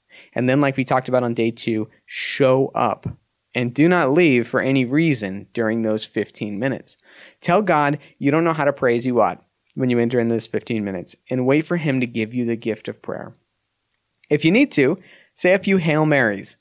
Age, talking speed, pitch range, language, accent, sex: 30-49, 215 wpm, 115-150 Hz, English, American, male